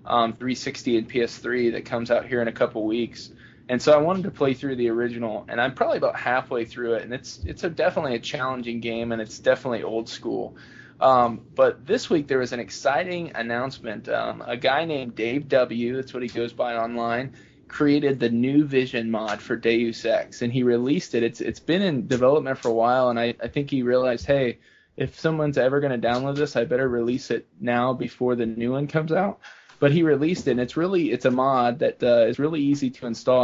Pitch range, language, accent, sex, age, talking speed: 120-140 Hz, English, American, male, 20-39, 225 wpm